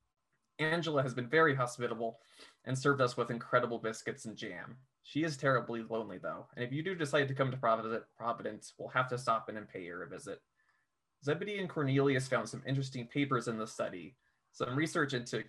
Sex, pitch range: male, 120-140 Hz